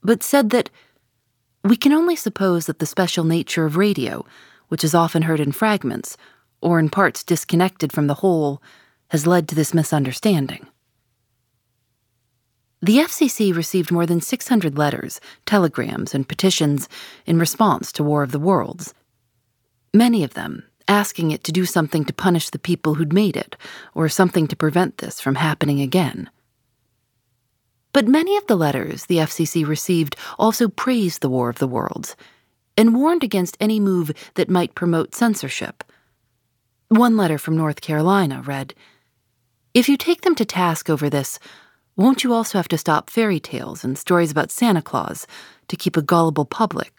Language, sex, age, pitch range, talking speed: English, female, 30-49, 125-190 Hz, 160 wpm